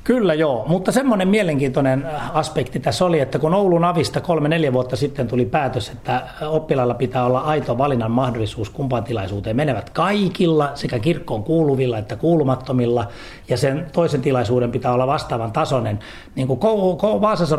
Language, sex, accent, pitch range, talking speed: Finnish, male, native, 125-170 Hz, 145 wpm